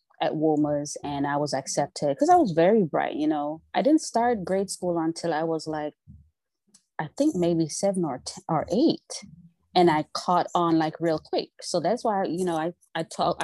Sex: female